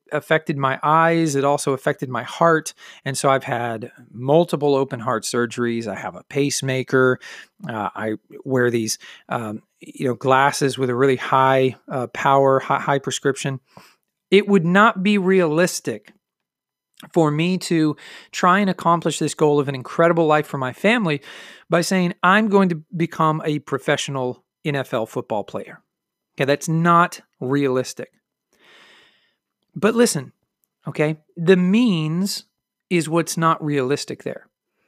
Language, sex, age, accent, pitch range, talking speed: English, male, 40-59, American, 135-185 Hz, 140 wpm